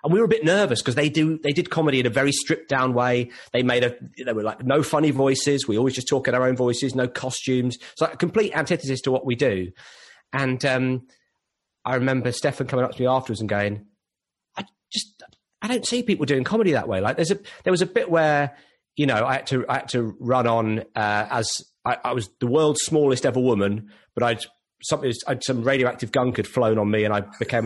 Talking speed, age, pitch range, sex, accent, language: 225 wpm, 30-49, 125-165 Hz, male, British, English